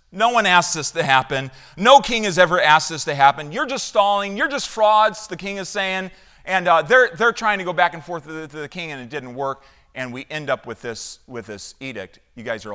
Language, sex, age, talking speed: English, male, 40-59, 255 wpm